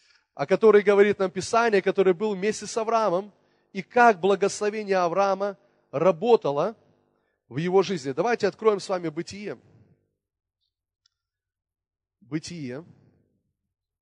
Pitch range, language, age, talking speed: 155-230 Hz, Russian, 30-49, 105 wpm